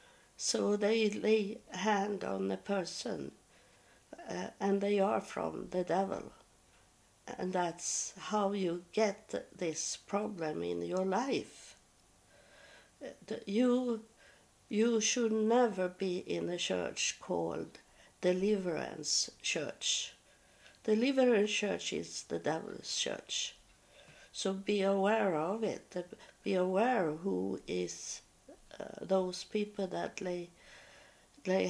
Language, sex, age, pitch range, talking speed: English, female, 60-79, 180-220 Hz, 105 wpm